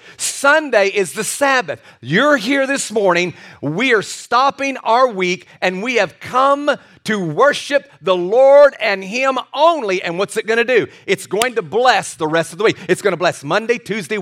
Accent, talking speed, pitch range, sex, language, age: American, 190 wpm, 170-240 Hz, male, English, 40-59